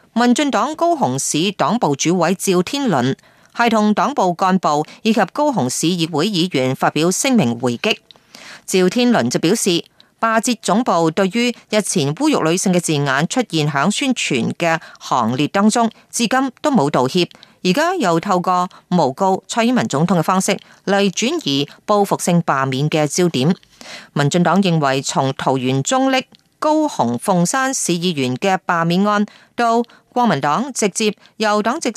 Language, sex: Chinese, female